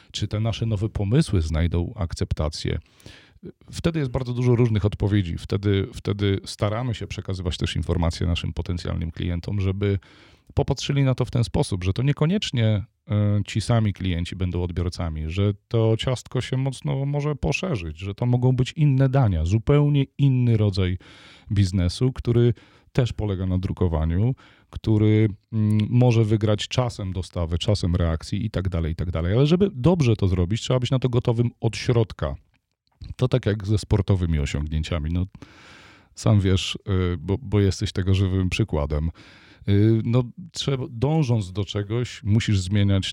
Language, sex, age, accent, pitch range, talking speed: Polish, male, 40-59, native, 90-120 Hz, 145 wpm